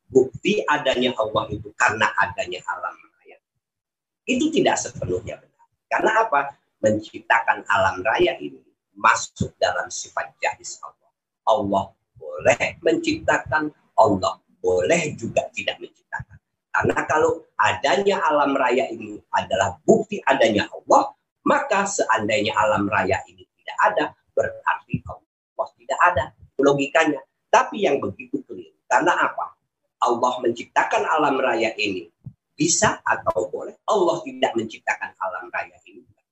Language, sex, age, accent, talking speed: Indonesian, male, 50-69, native, 120 wpm